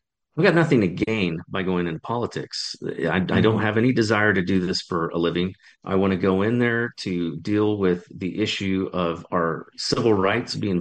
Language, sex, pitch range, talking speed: English, male, 90-115 Hz, 205 wpm